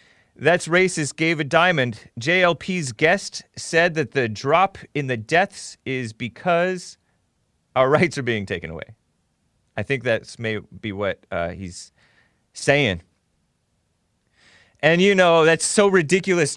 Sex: male